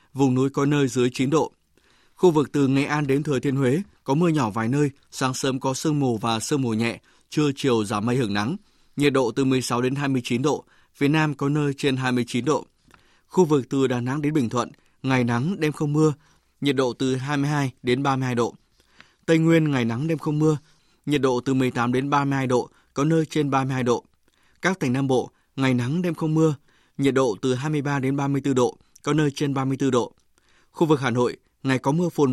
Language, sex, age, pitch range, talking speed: Vietnamese, male, 20-39, 125-150 Hz, 250 wpm